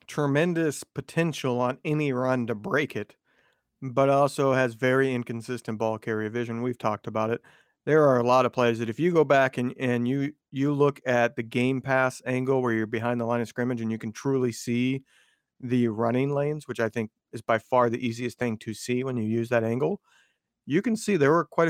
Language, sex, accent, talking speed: English, male, American, 215 wpm